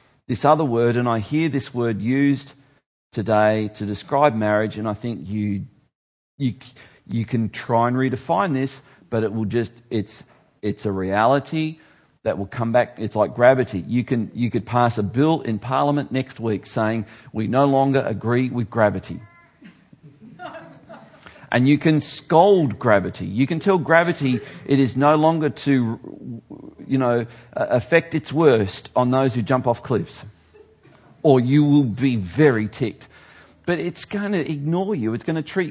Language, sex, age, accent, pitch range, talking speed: English, male, 40-59, Australian, 110-145 Hz, 165 wpm